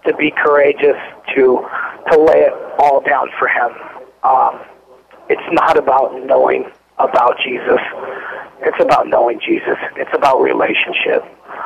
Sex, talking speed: male, 130 wpm